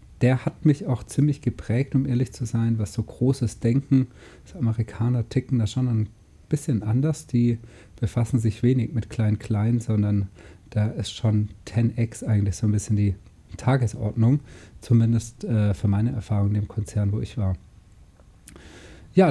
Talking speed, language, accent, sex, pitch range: 160 wpm, German, German, male, 110-130 Hz